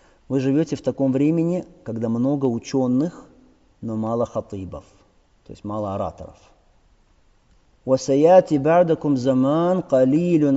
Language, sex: Russian, male